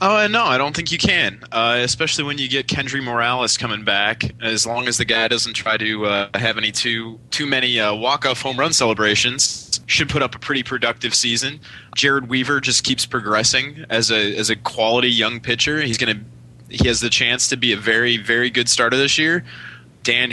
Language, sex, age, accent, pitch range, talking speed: English, male, 20-39, American, 110-130 Hz, 215 wpm